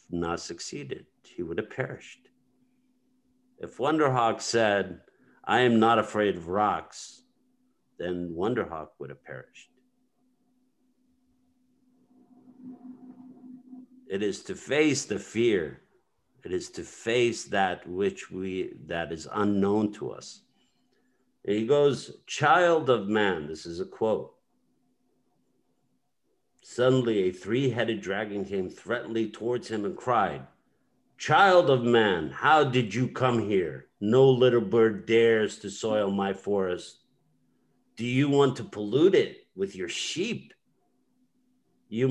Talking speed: 120 wpm